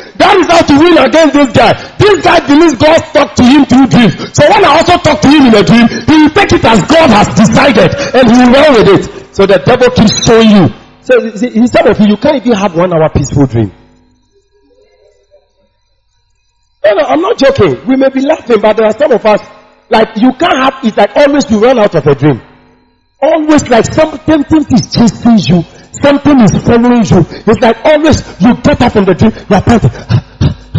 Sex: male